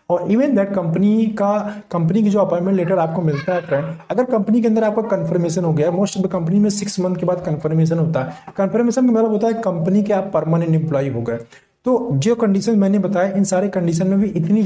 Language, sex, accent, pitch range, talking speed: Hindi, male, native, 165-230 Hz, 230 wpm